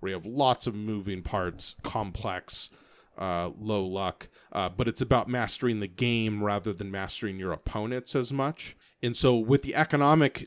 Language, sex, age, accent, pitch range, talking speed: English, male, 30-49, American, 95-125 Hz, 170 wpm